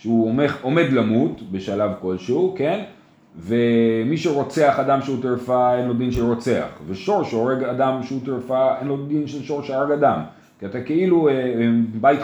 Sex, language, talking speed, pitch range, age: male, Hebrew, 150 wpm, 120-160 Hz, 30-49